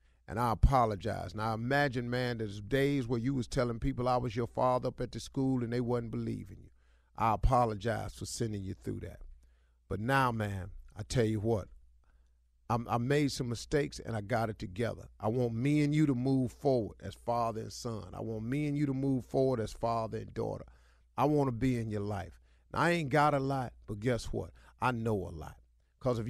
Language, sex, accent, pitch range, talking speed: English, male, American, 105-135 Hz, 220 wpm